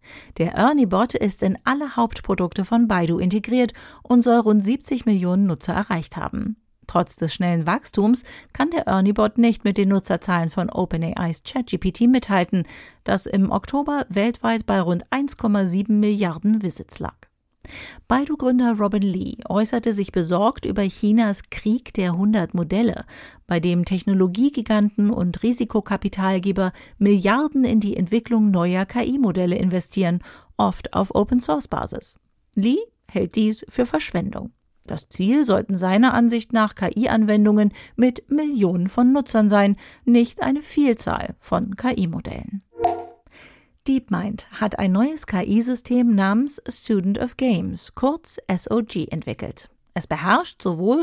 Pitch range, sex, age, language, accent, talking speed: 185-240 Hz, female, 50-69, German, German, 125 wpm